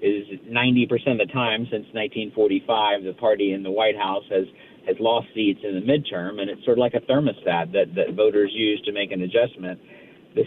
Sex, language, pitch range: male, English, 105-145 Hz